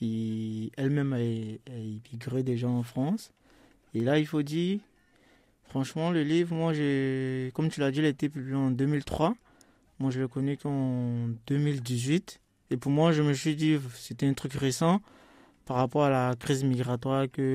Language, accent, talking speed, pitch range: French, French, 180 wpm, 125-145 Hz